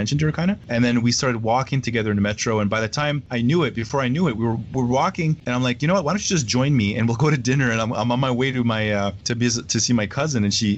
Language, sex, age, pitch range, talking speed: English, male, 30-49, 100-125 Hz, 345 wpm